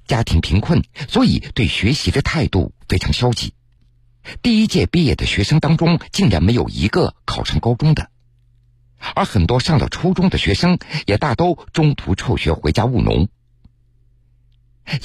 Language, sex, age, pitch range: Chinese, male, 50-69, 105-125 Hz